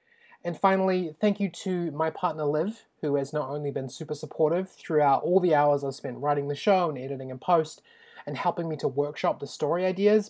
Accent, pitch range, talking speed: Australian, 145-175 Hz, 210 wpm